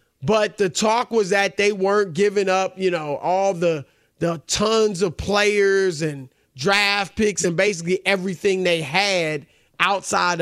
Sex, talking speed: male, 150 wpm